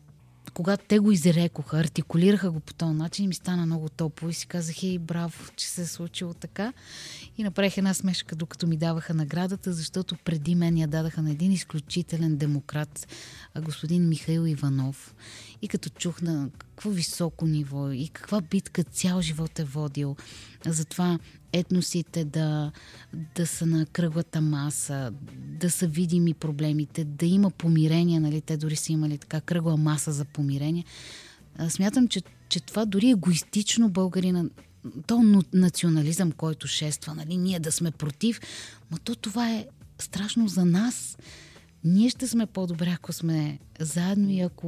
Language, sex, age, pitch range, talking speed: Bulgarian, female, 30-49, 150-180 Hz, 155 wpm